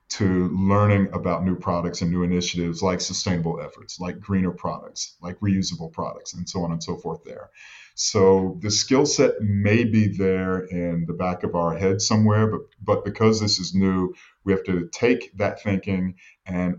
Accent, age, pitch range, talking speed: American, 40-59, 90-100 Hz, 180 wpm